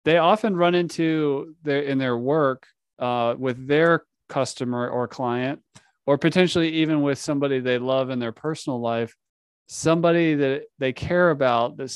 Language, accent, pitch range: English, American, 130-150 Hz